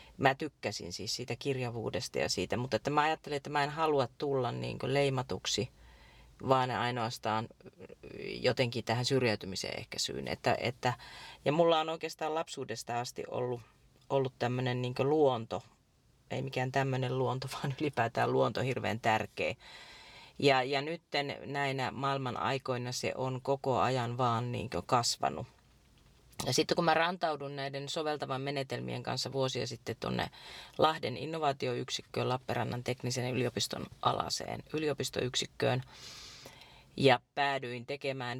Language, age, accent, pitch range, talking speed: Finnish, 30-49, native, 120-140 Hz, 125 wpm